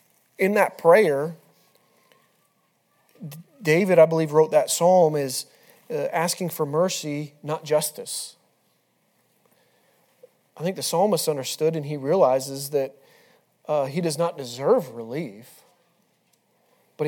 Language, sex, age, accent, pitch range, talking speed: English, male, 30-49, American, 145-190 Hz, 110 wpm